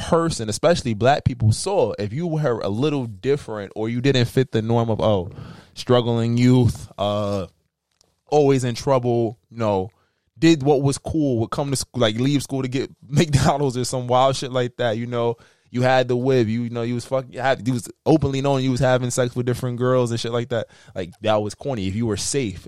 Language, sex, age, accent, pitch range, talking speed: English, male, 20-39, American, 115-150 Hz, 225 wpm